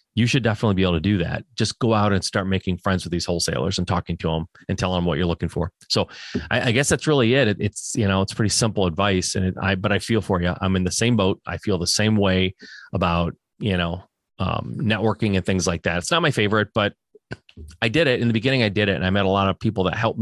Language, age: English, 30-49